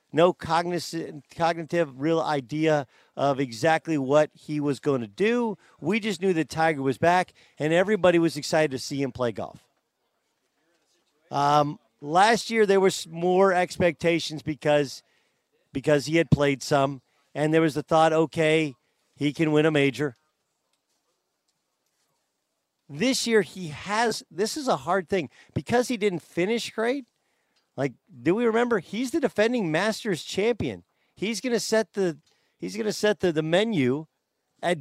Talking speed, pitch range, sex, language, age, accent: 150 wpm, 150-205 Hz, male, English, 50-69, American